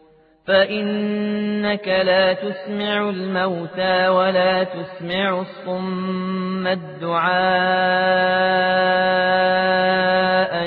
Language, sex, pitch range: Arabic, male, 185-190 Hz